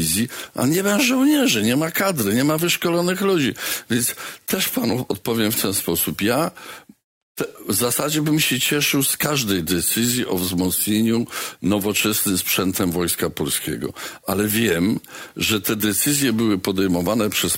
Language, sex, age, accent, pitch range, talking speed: Polish, male, 50-69, native, 110-155 Hz, 140 wpm